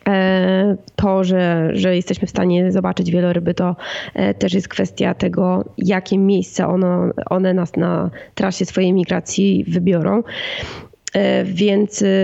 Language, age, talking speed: Polish, 20-39, 120 wpm